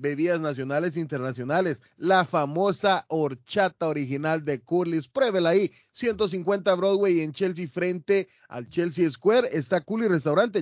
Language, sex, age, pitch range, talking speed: Spanish, male, 30-49, 150-195 Hz, 130 wpm